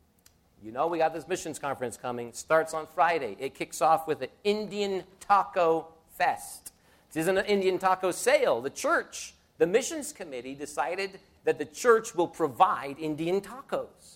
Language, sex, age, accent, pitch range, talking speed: English, male, 50-69, American, 140-210 Hz, 165 wpm